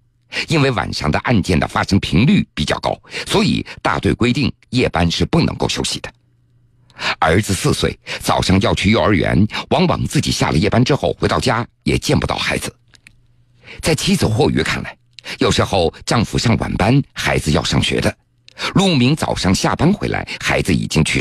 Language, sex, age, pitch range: Chinese, male, 50-69, 95-125 Hz